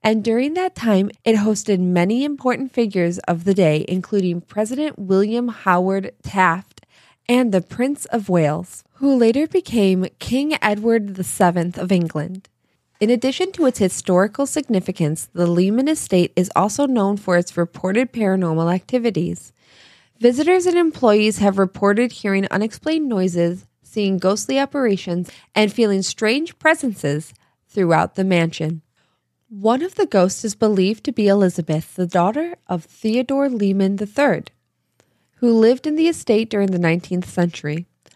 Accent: American